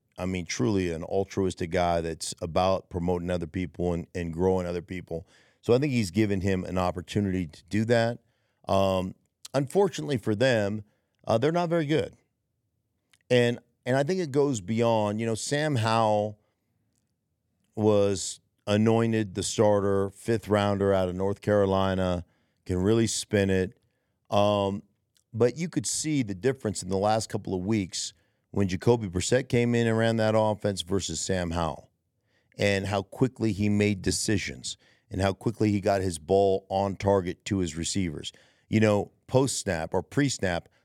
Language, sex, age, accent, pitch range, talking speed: English, male, 50-69, American, 95-115 Hz, 160 wpm